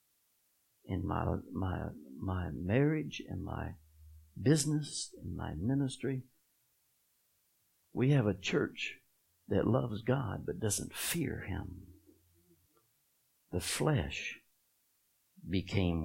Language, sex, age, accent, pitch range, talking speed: English, male, 60-79, American, 95-150 Hz, 95 wpm